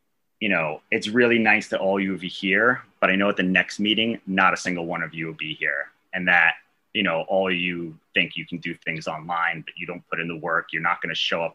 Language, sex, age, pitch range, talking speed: English, male, 30-49, 80-100 Hz, 275 wpm